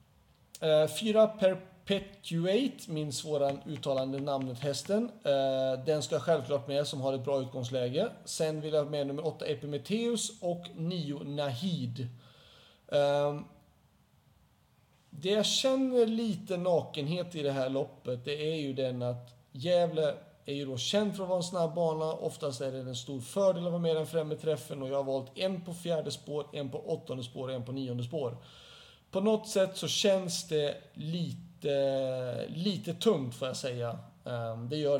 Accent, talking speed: native, 165 wpm